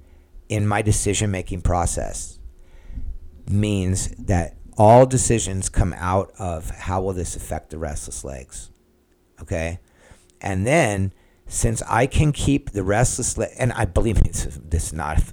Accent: American